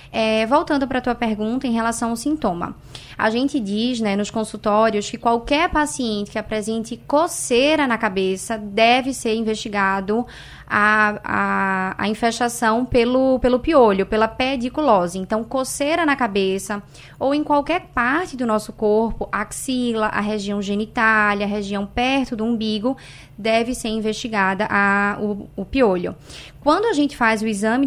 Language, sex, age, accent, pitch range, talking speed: Portuguese, female, 20-39, Brazilian, 215-270 Hz, 145 wpm